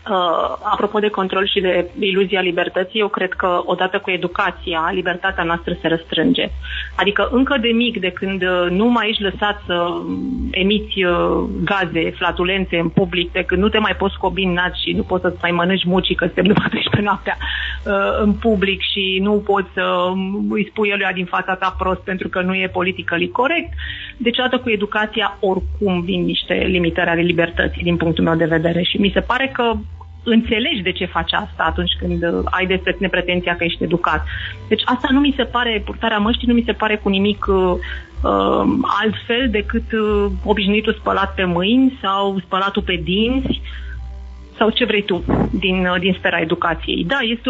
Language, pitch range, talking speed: Romanian, 180-215 Hz, 180 wpm